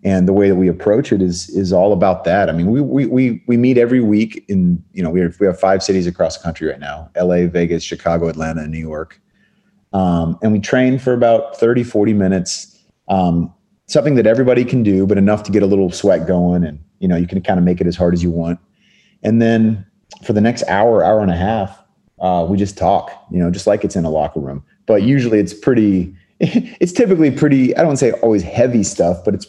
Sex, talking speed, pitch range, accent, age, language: male, 240 wpm, 90-115 Hz, American, 30-49, English